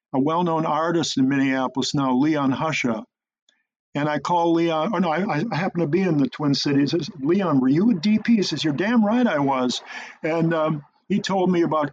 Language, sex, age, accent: English, male, 50-69, American